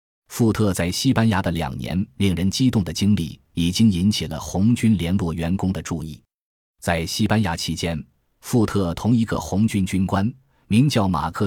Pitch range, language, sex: 85-110 Hz, Chinese, male